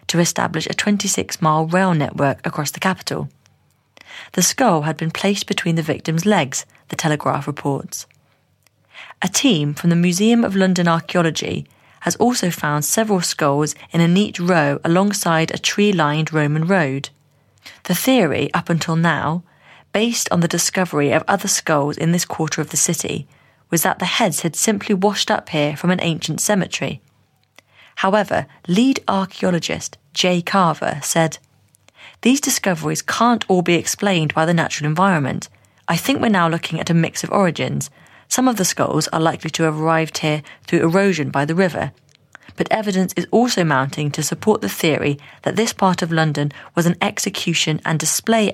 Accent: British